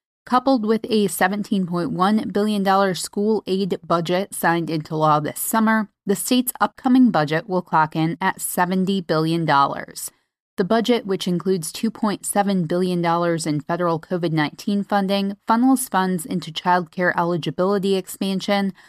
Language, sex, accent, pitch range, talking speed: English, female, American, 170-210 Hz, 125 wpm